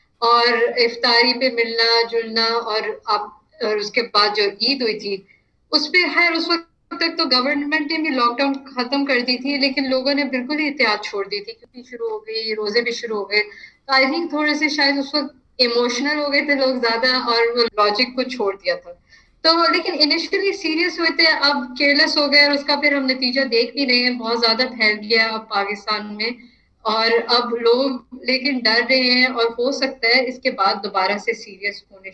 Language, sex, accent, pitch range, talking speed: Hindi, female, native, 225-280 Hz, 205 wpm